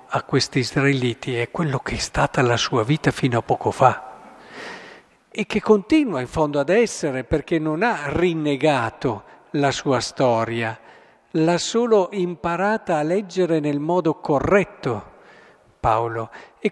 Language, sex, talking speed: Italian, male, 140 wpm